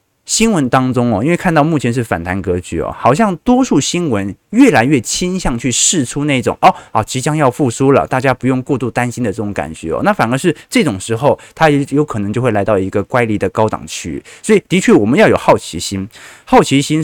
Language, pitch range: Chinese, 105-145 Hz